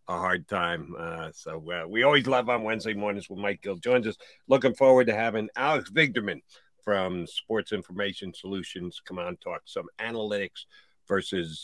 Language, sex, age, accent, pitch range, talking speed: English, male, 50-69, American, 90-125 Hz, 170 wpm